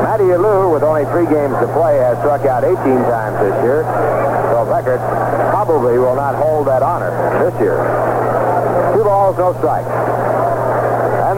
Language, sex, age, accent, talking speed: English, male, 60-79, American, 160 wpm